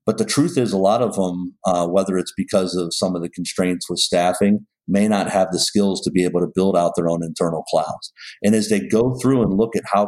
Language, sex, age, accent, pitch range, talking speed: English, male, 50-69, American, 90-115 Hz, 255 wpm